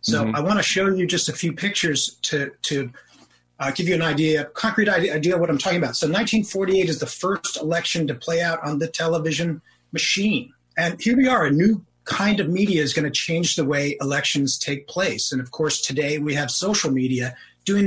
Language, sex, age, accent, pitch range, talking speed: English, male, 30-49, American, 145-180 Hz, 220 wpm